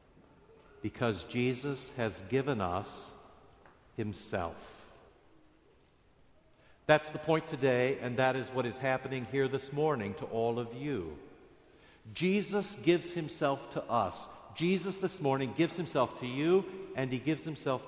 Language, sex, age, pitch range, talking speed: English, male, 60-79, 130-190 Hz, 130 wpm